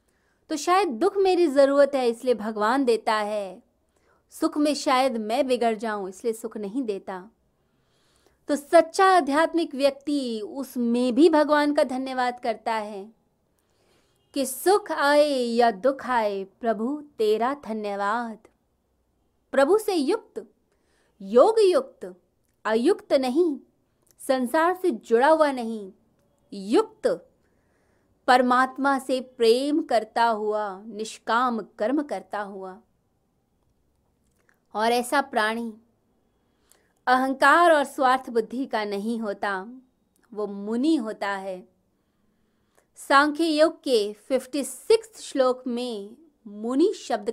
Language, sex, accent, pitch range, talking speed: Hindi, female, native, 215-295 Hz, 105 wpm